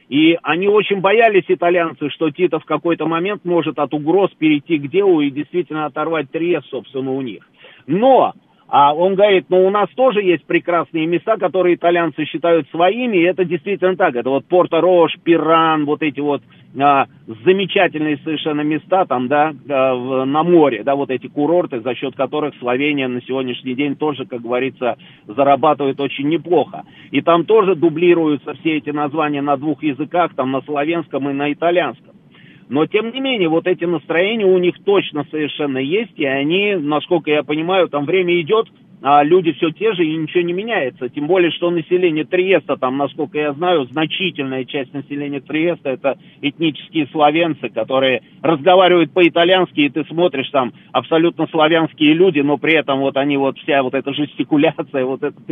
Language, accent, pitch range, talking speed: Russian, native, 145-180 Hz, 170 wpm